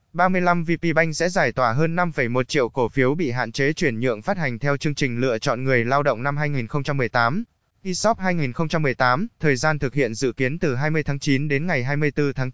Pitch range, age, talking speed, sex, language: 130-170 Hz, 20-39, 210 wpm, male, Vietnamese